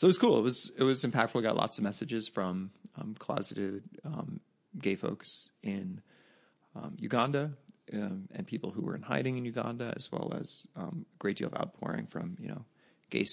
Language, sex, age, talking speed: English, male, 30-49, 205 wpm